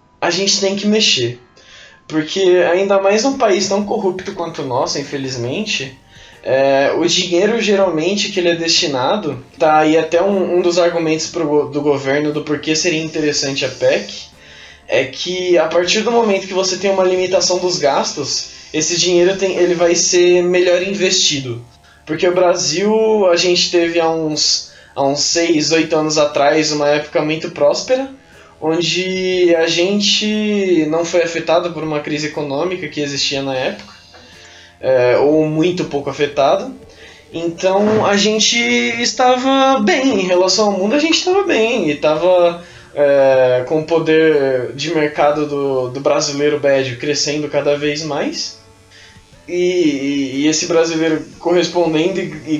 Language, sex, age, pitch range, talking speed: Portuguese, male, 20-39, 145-185 Hz, 150 wpm